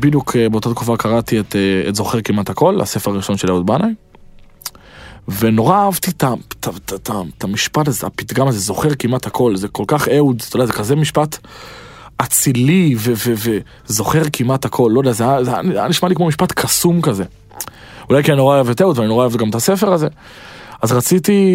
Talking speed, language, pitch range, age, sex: 155 wpm, Hebrew, 115-150 Hz, 20-39, male